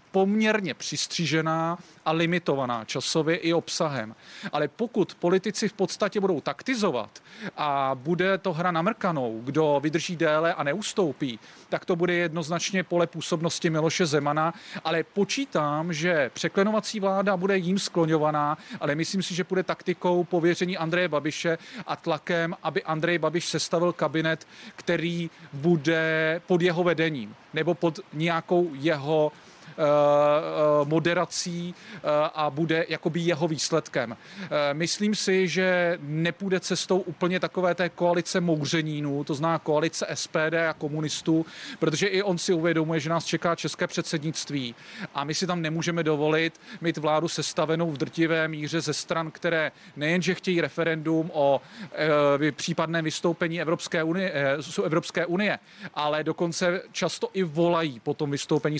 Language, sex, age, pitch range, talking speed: Czech, male, 40-59, 155-180 Hz, 135 wpm